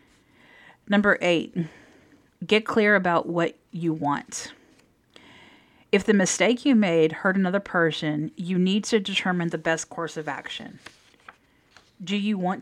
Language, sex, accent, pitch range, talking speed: English, female, American, 160-195 Hz, 135 wpm